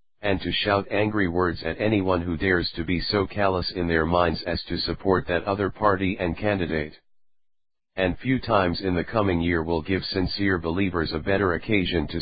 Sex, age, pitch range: male, 40-59, 85-100 Hz